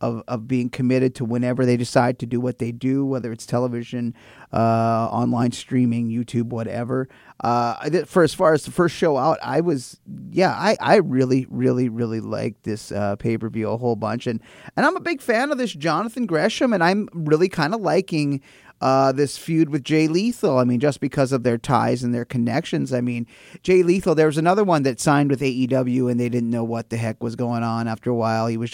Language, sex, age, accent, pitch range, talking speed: English, male, 30-49, American, 120-150 Hz, 220 wpm